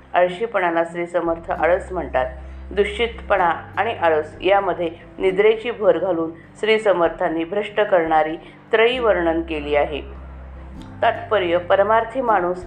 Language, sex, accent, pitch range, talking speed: Marathi, female, native, 165-215 Hz, 110 wpm